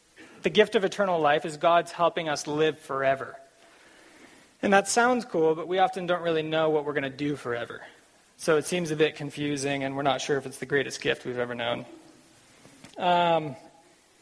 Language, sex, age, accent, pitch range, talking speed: English, male, 30-49, American, 170-230 Hz, 195 wpm